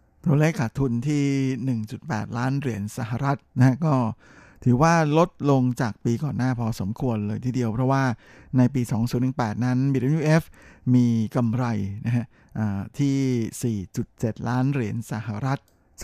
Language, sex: Thai, male